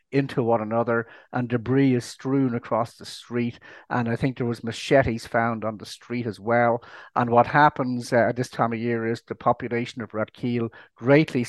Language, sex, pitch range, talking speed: English, male, 115-140 Hz, 200 wpm